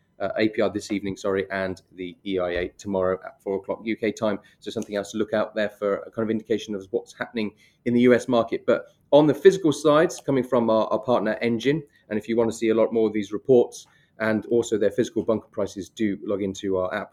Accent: British